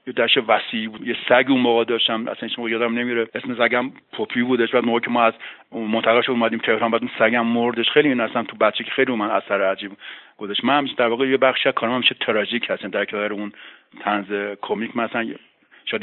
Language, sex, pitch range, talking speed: Persian, male, 105-130 Hz, 220 wpm